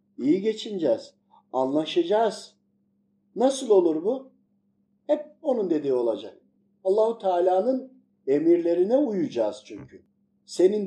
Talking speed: 90 wpm